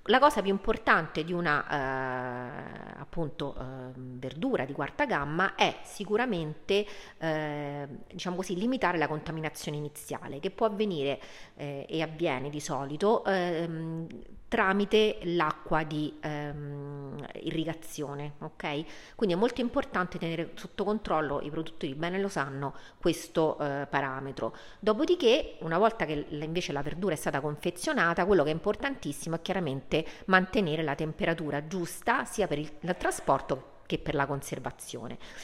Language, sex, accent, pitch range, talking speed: Italian, female, native, 145-185 Hz, 140 wpm